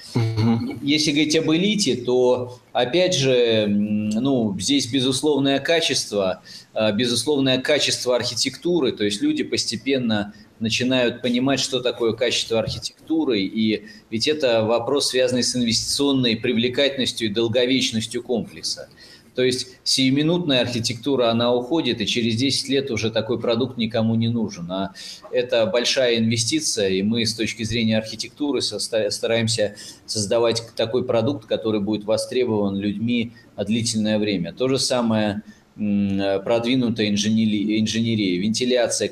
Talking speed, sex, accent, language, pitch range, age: 120 wpm, male, native, Russian, 105-125 Hz, 20-39